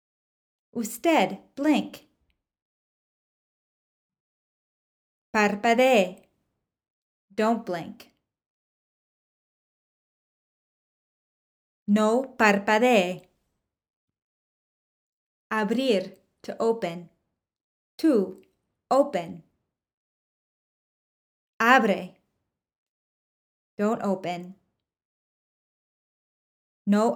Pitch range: 185-240 Hz